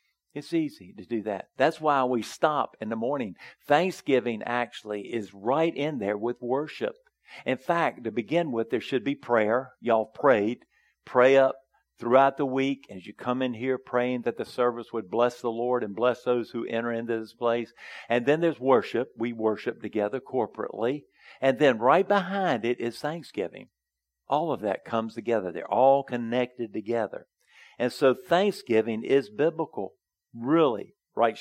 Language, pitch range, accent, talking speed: English, 115-135 Hz, American, 170 wpm